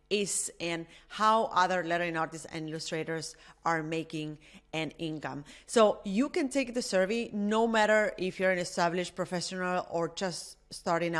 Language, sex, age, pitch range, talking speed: English, female, 30-49, 175-220 Hz, 150 wpm